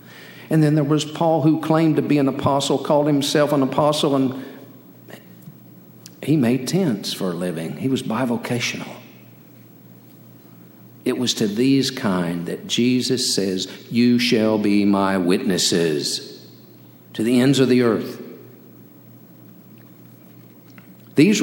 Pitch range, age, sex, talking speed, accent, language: 95-140 Hz, 50-69, male, 125 wpm, American, English